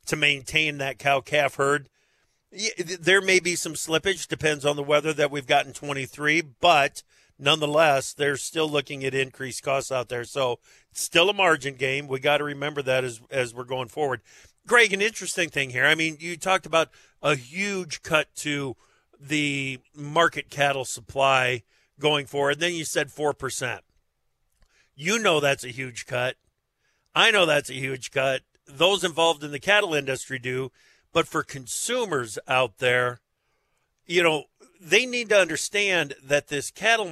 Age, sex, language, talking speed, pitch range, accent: 50-69, male, English, 165 wpm, 135-170 Hz, American